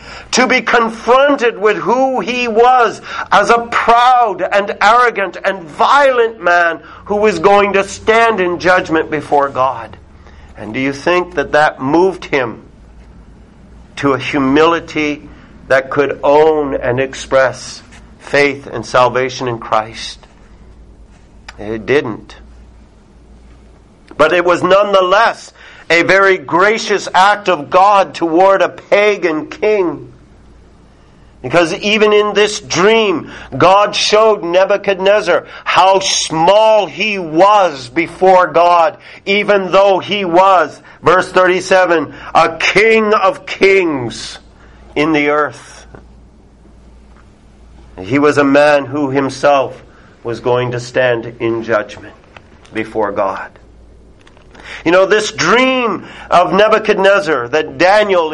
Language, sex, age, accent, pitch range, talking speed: English, male, 50-69, American, 130-205 Hz, 115 wpm